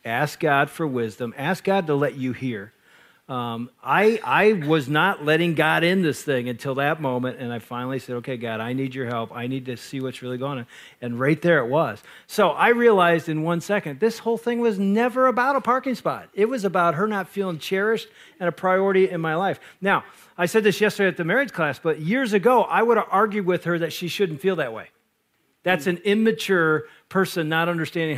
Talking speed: 220 wpm